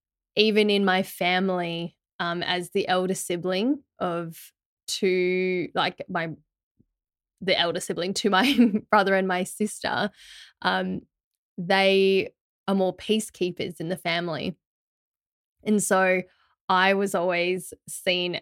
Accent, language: Australian, English